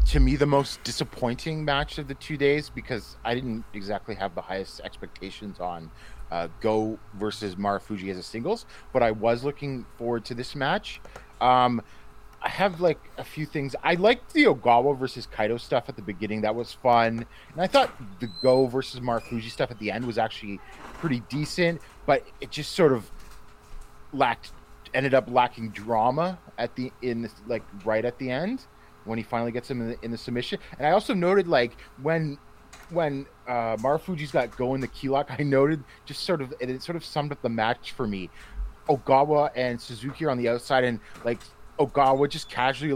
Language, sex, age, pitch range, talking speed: English, male, 30-49, 110-140 Hz, 200 wpm